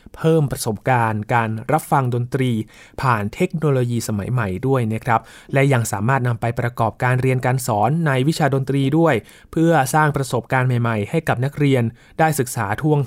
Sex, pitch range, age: male, 120-155 Hz, 20-39